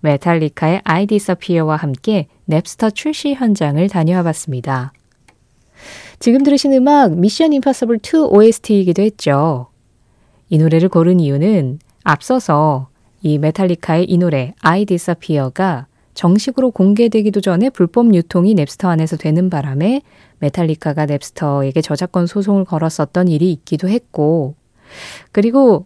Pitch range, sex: 150-210 Hz, female